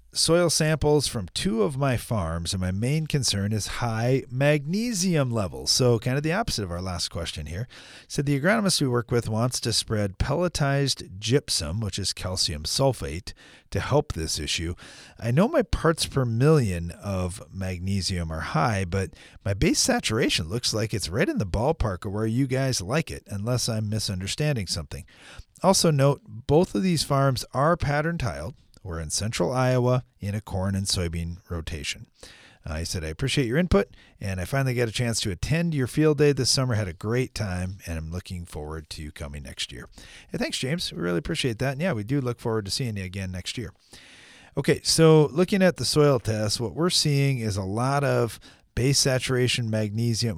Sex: male